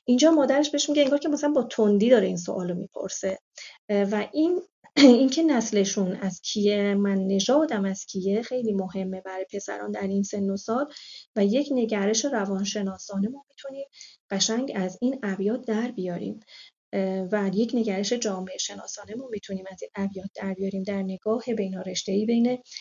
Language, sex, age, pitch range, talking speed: Persian, female, 30-49, 200-255 Hz, 160 wpm